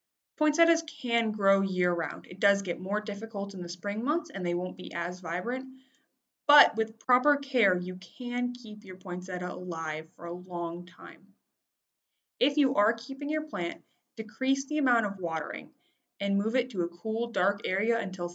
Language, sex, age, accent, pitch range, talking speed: English, female, 20-39, American, 175-240 Hz, 175 wpm